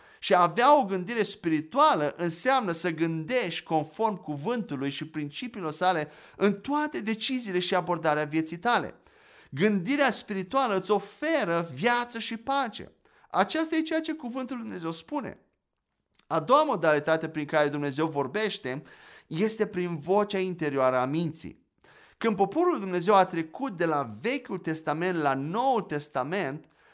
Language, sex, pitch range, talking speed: Romanian, male, 155-215 Hz, 135 wpm